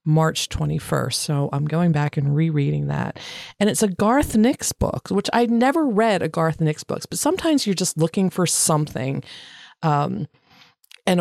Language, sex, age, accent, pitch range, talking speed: English, female, 30-49, American, 145-180 Hz, 170 wpm